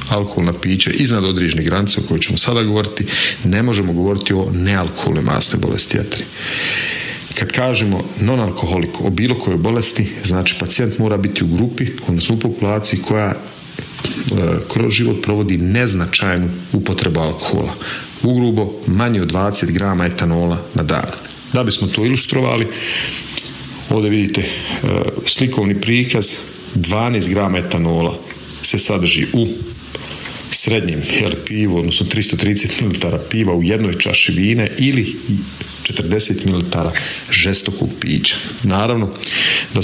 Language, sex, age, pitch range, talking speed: Croatian, male, 40-59, 90-105 Hz, 120 wpm